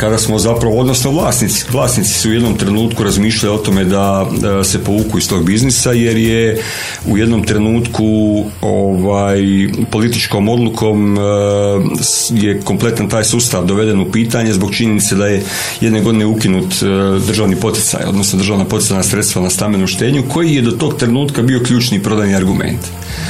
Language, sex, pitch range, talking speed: Croatian, male, 100-115 Hz, 155 wpm